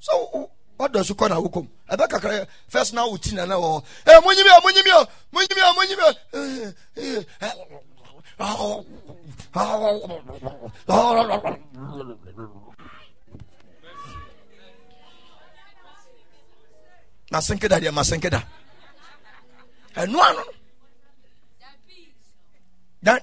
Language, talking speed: English, 90 wpm